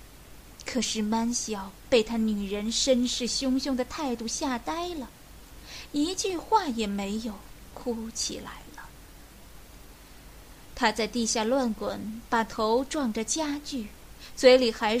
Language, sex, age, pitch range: Chinese, female, 20-39, 215-265 Hz